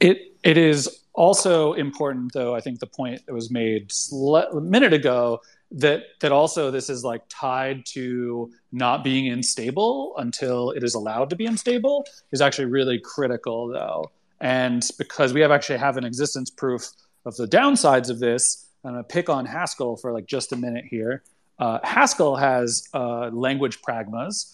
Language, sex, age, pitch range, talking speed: English, male, 30-49, 125-155 Hz, 170 wpm